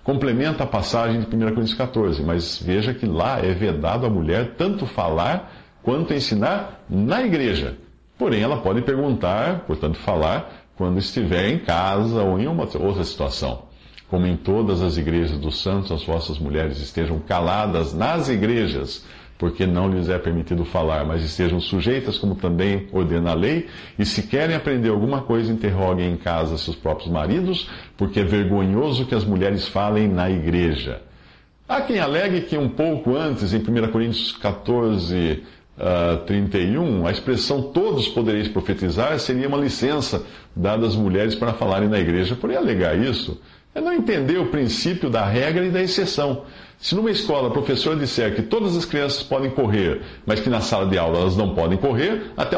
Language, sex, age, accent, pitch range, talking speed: Portuguese, male, 50-69, Brazilian, 90-125 Hz, 170 wpm